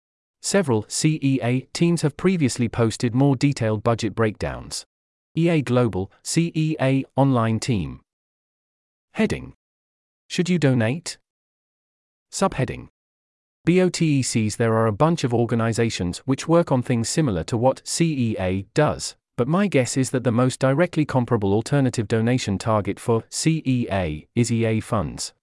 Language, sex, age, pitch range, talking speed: English, male, 30-49, 110-140 Hz, 125 wpm